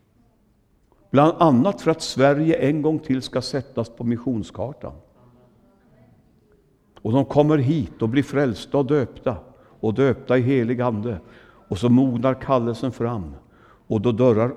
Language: Swedish